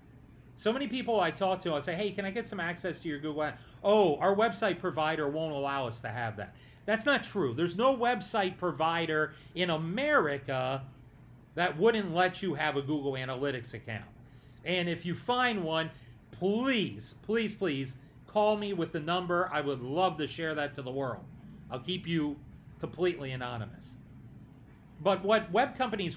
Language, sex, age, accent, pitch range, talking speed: English, male, 40-59, American, 130-195 Hz, 175 wpm